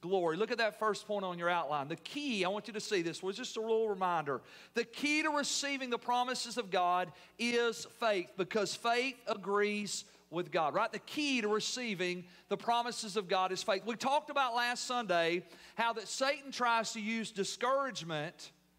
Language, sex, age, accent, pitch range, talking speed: English, male, 40-59, American, 205-250 Hz, 190 wpm